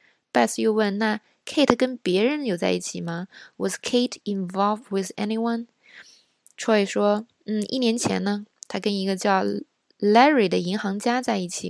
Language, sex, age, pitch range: Chinese, female, 20-39, 185-230 Hz